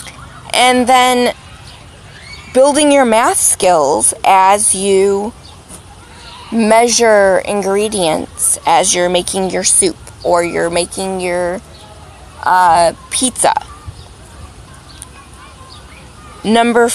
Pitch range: 195-250 Hz